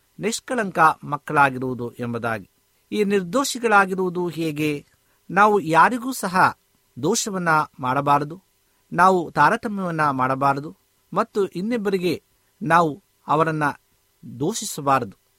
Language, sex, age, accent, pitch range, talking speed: Kannada, male, 50-69, native, 135-185 Hz, 75 wpm